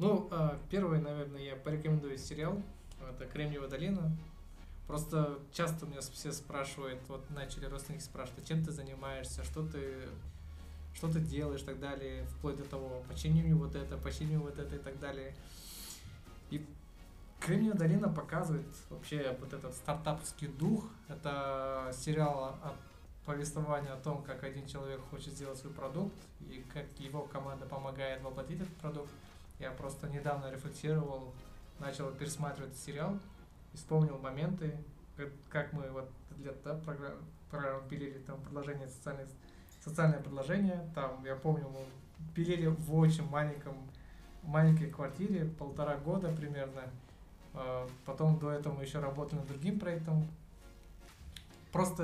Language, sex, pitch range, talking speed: Russian, male, 135-155 Hz, 130 wpm